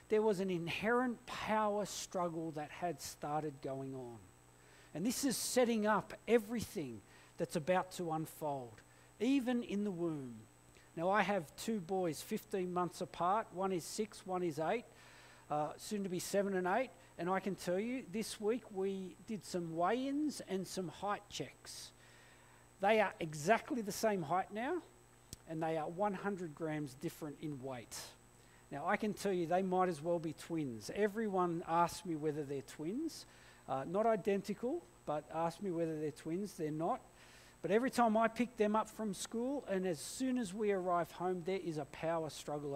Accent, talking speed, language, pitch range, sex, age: Australian, 175 wpm, English, 155-215 Hz, male, 50-69